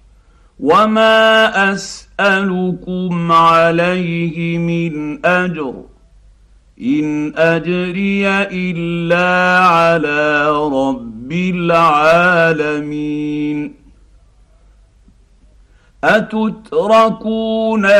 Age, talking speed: 50-69, 40 wpm